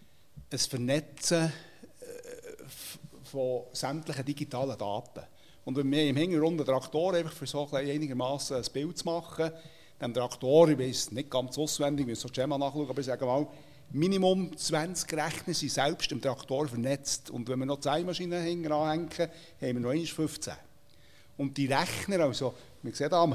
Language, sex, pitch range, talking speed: German, male, 130-165 Hz, 155 wpm